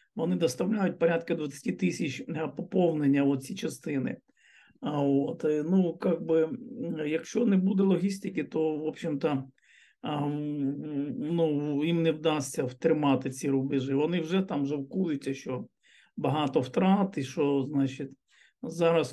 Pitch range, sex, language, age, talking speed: 140-170 Hz, male, Ukrainian, 50-69, 115 wpm